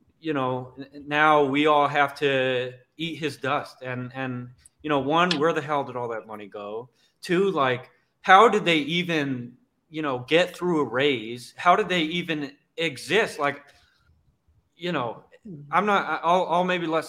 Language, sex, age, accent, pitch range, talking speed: English, male, 30-49, American, 120-155 Hz, 170 wpm